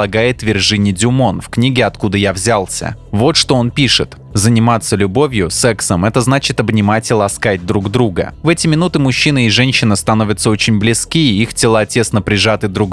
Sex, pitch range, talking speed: male, 105-130 Hz, 165 wpm